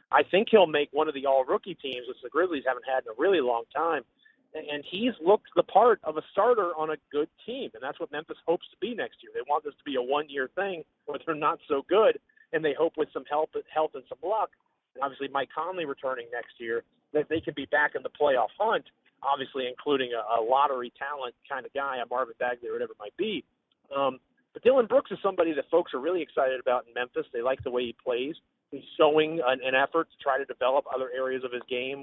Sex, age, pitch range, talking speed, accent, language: male, 40-59, 130-195 Hz, 240 wpm, American, English